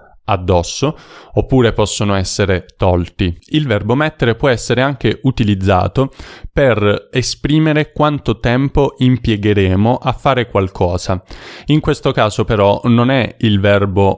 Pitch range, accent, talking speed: 100-125 Hz, native, 120 wpm